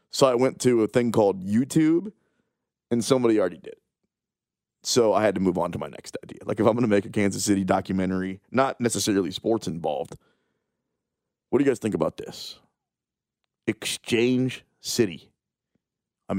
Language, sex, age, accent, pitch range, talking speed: English, male, 30-49, American, 115-180 Hz, 170 wpm